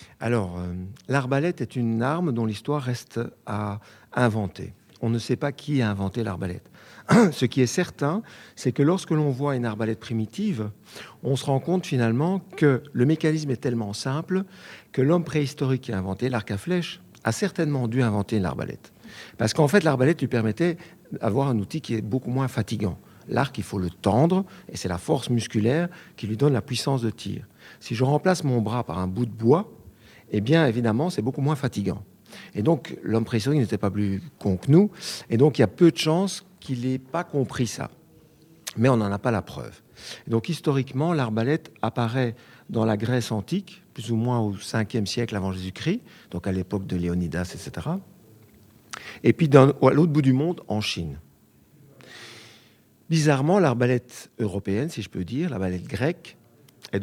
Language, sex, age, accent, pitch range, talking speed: French, male, 50-69, French, 110-150 Hz, 185 wpm